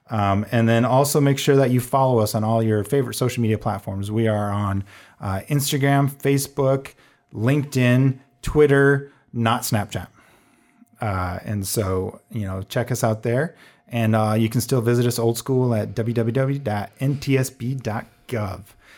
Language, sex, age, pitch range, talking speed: English, male, 30-49, 115-150 Hz, 150 wpm